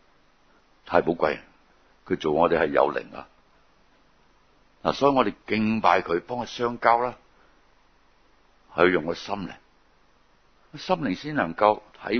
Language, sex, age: Chinese, male, 60-79